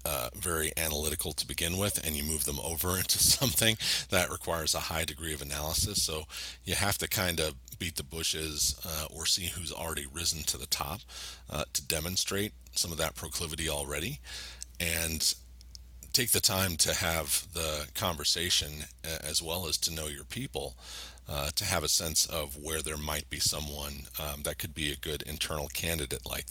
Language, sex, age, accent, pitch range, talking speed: English, male, 40-59, American, 70-85 Hz, 185 wpm